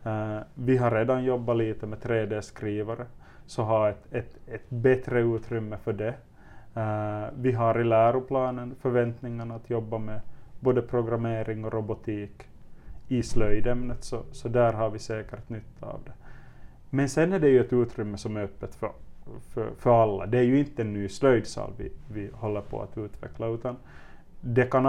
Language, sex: Swedish, male